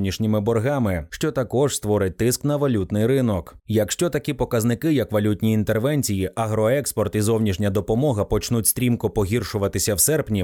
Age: 20-39